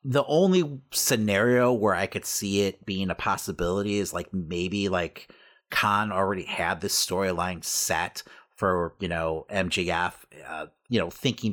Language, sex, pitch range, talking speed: English, male, 95-120 Hz, 150 wpm